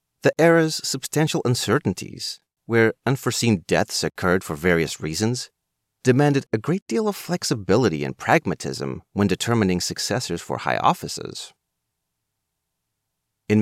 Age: 30-49